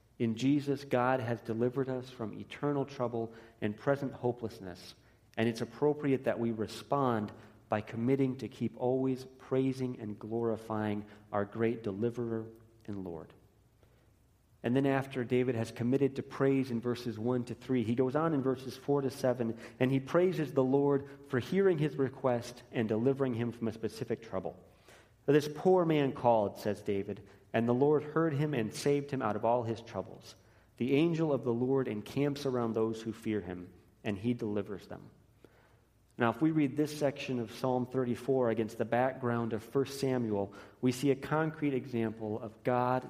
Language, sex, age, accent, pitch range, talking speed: English, male, 40-59, American, 115-135 Hz, 175 wpm